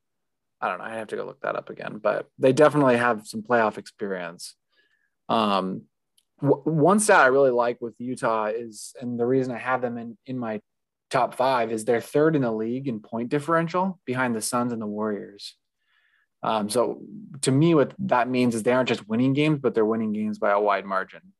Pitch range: 110-140 Hz